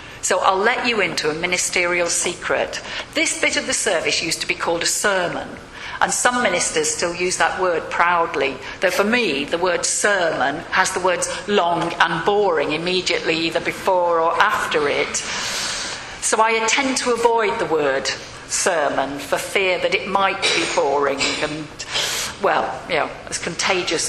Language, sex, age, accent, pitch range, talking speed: English, female, 40-59, British, 165-225 Hz, 165 wpm